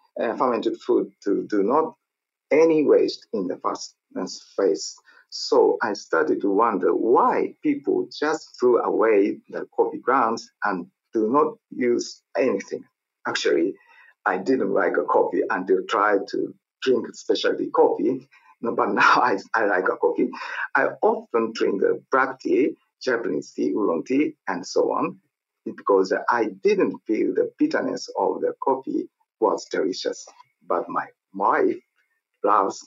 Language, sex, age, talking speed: English, male, 50-69, 145 wpm